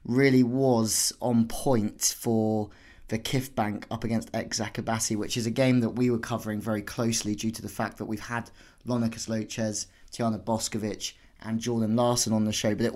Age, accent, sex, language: 20-39, British, male, English